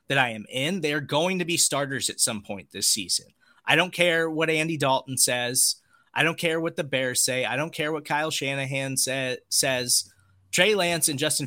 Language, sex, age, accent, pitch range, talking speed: English, male, 20-39, American, 120-155 Hz, 205 wpm